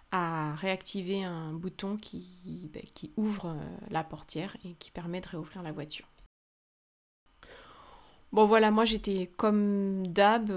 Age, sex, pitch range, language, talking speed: 30-49, female, 175-210 Hz, French, 125 wpm